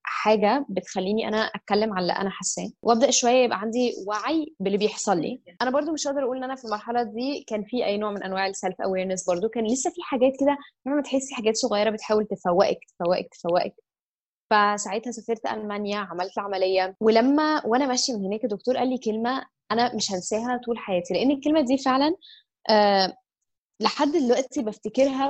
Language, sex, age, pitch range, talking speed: Arabic, female, 20-39, 205-255 Hz, 180 wpm